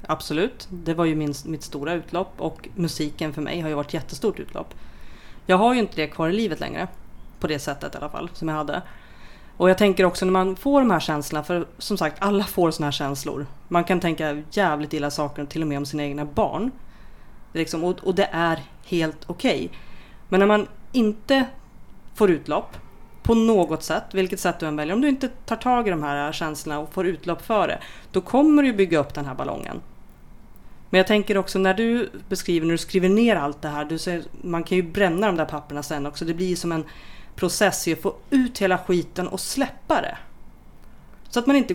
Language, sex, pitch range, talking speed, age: Swedish, female, 155-205 Hz, 220 wpm, 30-49